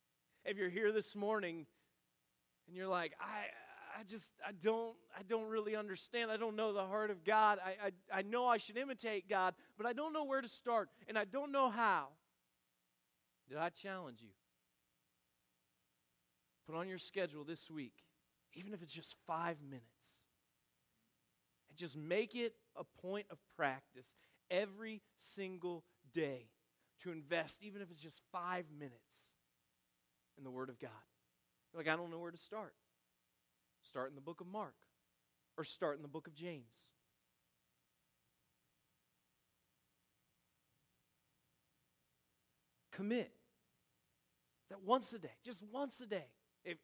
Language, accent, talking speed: English, American, 145 wpm